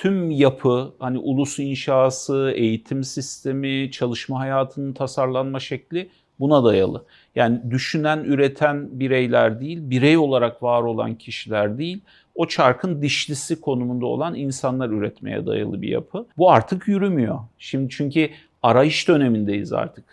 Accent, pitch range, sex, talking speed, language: native, 120-145 Hz, male, 125 wpm, Turkish